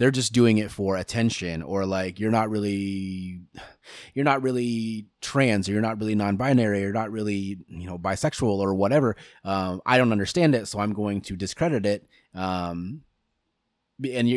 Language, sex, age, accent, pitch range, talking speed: English, male, 20-39, American, 95-120 Hz, 170 wpm